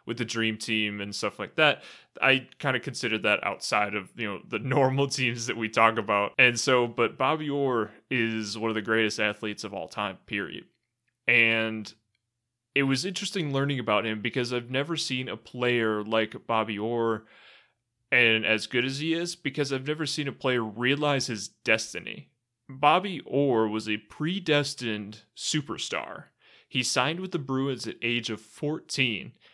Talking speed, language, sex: 175 wpm, English, male